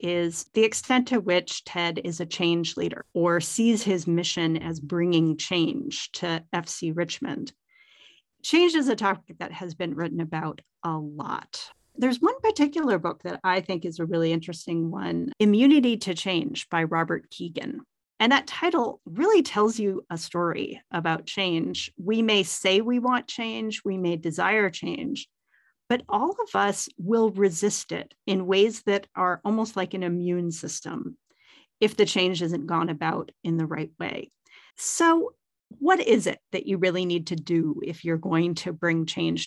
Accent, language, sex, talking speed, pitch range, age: American, English, female, 170 wpm, 170-230 Hz, 40-59